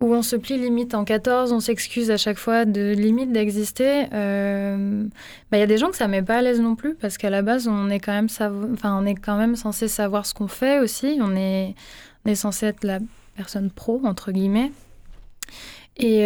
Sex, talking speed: female, 235 wpm